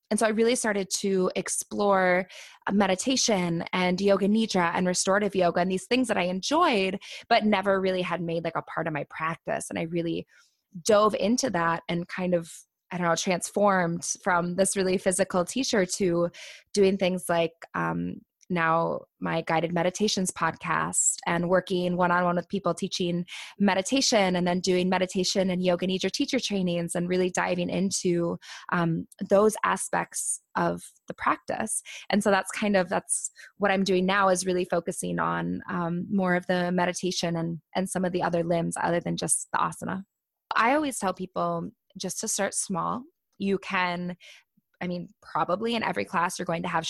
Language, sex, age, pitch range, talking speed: English, female, 20-39, 175-200 Hz, 175 wpm